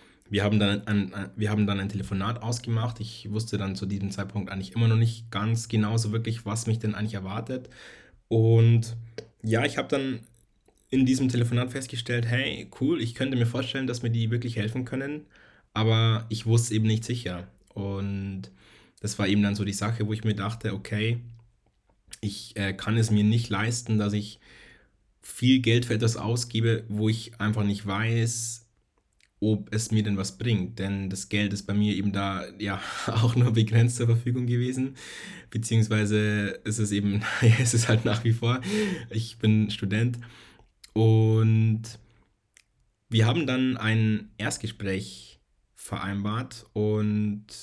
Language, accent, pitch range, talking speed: German, German, 100-115 Hz, 170 wpm